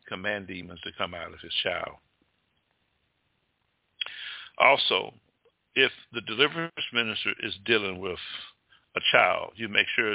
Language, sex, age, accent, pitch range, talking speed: English, male, 60-79, American, 100-120 Hz, 125 wpm